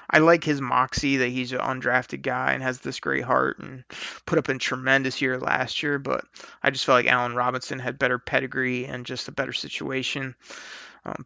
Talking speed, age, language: 205 wpm, 30-49, English